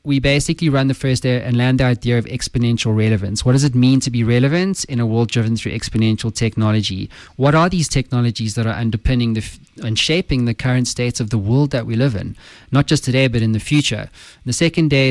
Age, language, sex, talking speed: 20-39, English, male, 220 wpm